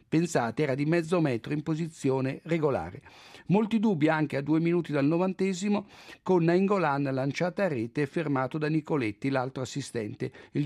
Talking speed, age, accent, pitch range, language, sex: 160 wpm, 50-69, native, 135-175 Hz, Italian, male